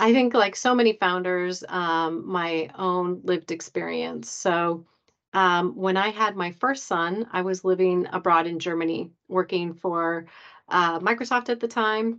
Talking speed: 160 wpm